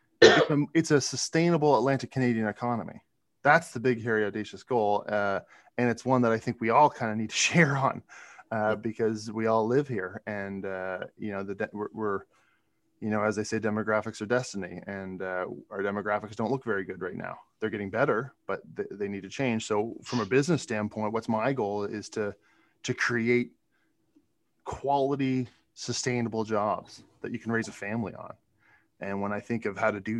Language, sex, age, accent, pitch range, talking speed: English, male, 20-39, American, 100-115 Hz, 190 wpm